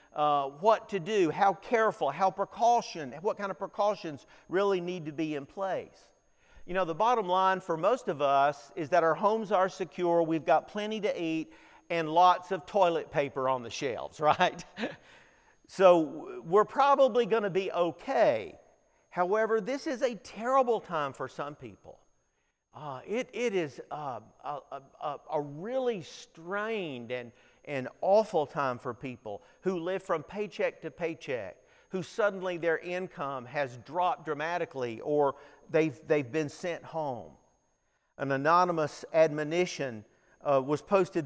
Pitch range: 150-200 Hz